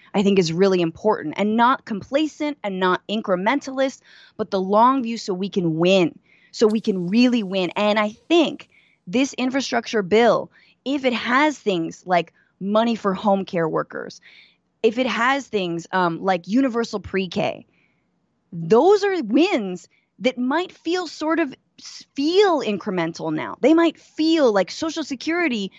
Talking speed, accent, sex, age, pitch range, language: 150 wpm, American, female, 20-39, 195-295 Hz, English